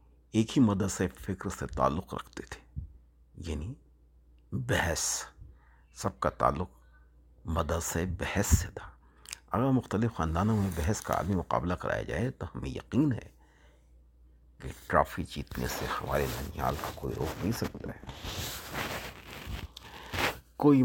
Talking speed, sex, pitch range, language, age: 125 wpm, male, 65-95 Hz, Urdu, 60-79